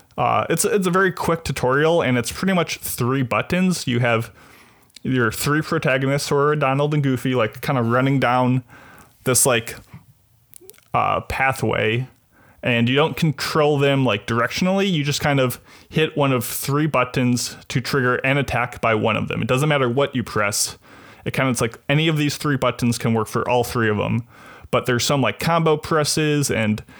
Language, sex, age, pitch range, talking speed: English, male, 20-39, 115-145 Hz, 190 wpm